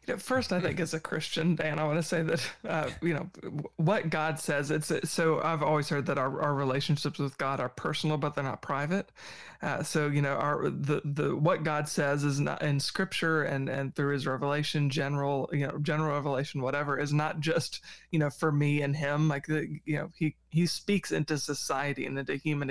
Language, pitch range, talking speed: English, 140-160 Hz, 210 wpm